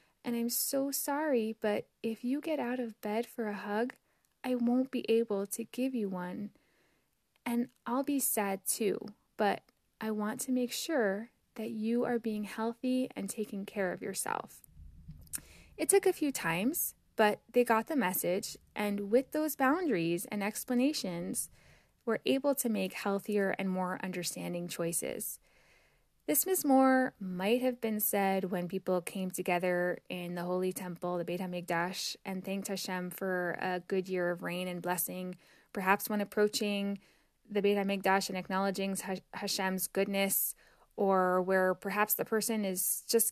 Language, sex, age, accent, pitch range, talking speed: English, female, 10-29, American, 190-240 Hz, 155 wpm